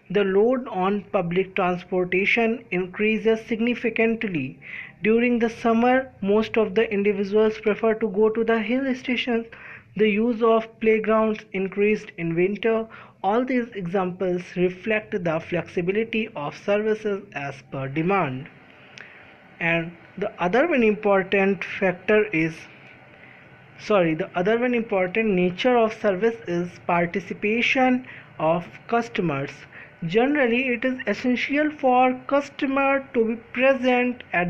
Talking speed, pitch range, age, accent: 120 wpm, 190-240 Hz, 20-39, native